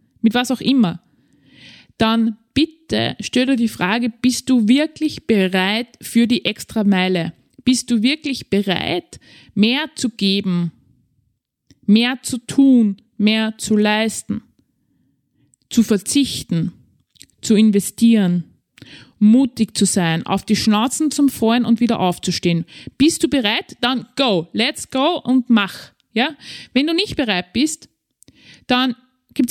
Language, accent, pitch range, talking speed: German, Austrian, 195-260 Hz, 130 wpm